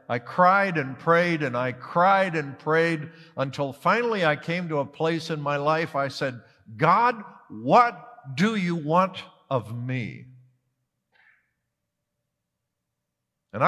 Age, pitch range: 60-79, 130-175 Hz